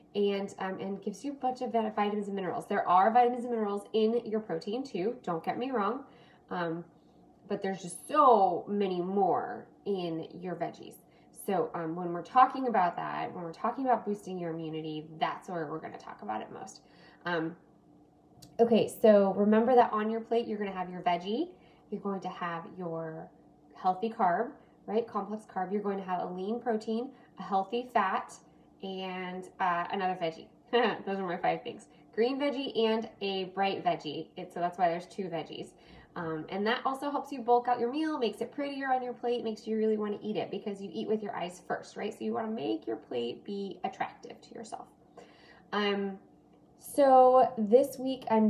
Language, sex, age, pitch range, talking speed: English, female, 10-29, 180-230 Hz, 195 wpm